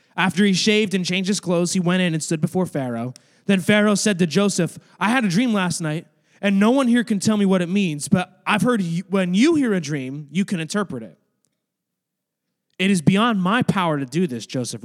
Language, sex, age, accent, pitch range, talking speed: English, male, 20-39, American, 150-195 Hz, 225 wpm